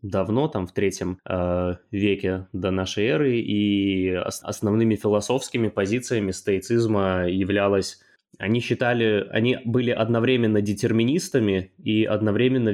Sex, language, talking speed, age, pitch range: male, Russian, 110 wpm, 20-39, 95-110 Hz